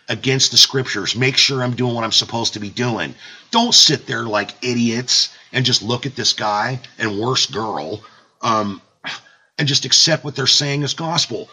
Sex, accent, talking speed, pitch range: male, American, 185 wpm, 105-145 Hz